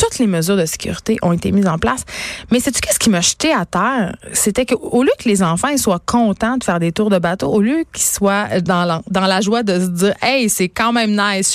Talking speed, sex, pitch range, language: 270 wpm, female, 195-275 Hz, French